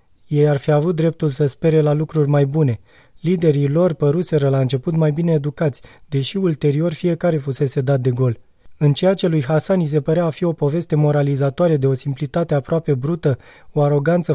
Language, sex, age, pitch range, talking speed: Romanian, male, 20-39, 140-165 Hz, 190 wpm